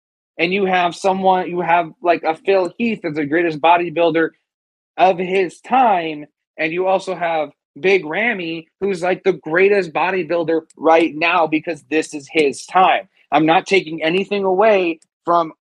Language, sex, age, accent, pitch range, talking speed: English, male, 30-49, American, 155-190 Hz, 155 wpm